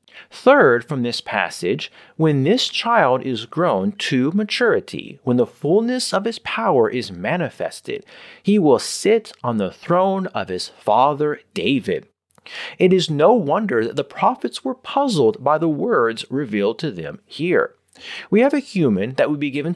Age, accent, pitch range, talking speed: 40-59, American, 135-210 Hz, 160 wpm